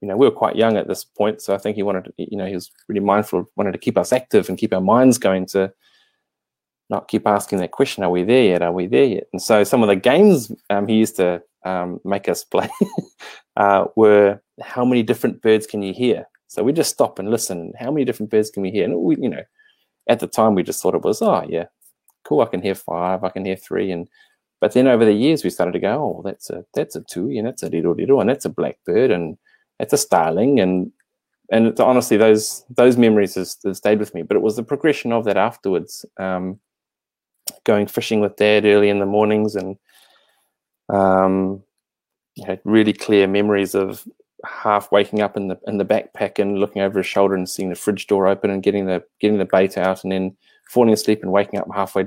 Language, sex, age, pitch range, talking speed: English, male, 20-39, 95-110 Hz, 235 wpm